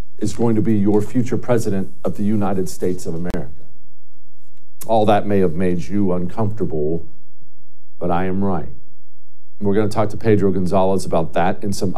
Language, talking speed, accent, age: English, 175 wpm, American, 50-69